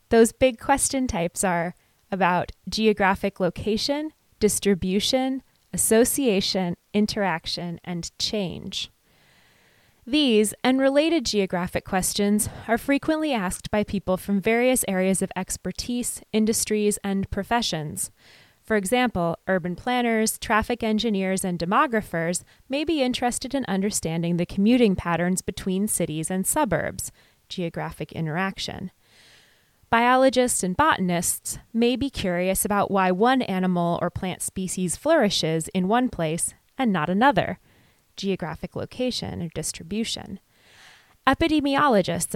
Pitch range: 180-235 Hz